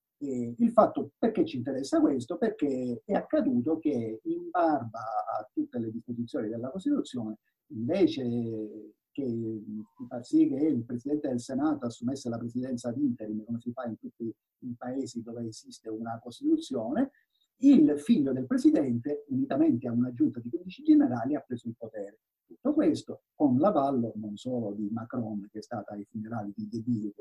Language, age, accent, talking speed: Italian, 50-69, native, 165 wpm